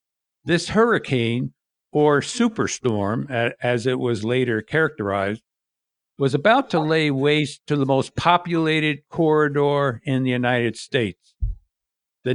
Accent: American